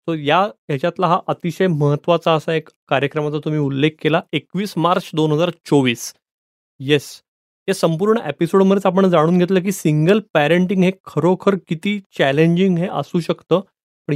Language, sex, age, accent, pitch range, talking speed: Marathi, male, 30-49, native, 150-180 Hz, 120 wpm